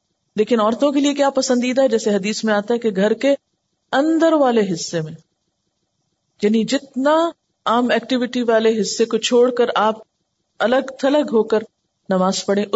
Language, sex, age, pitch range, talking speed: Urdu, female, 40-59, 190-230 Hz, 165 wpm